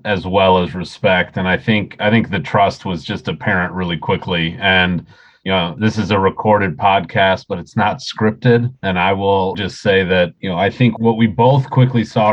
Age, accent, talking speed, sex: 40-59, American, 210 wpm, male